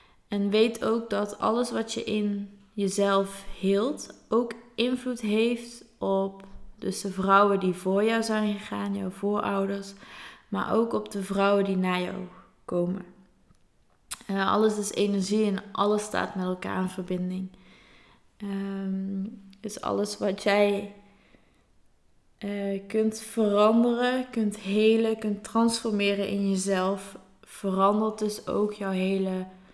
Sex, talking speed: female, 120 wpm